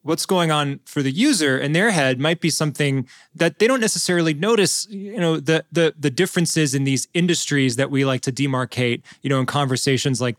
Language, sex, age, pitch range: English, male, 20-39, 135-160 Hz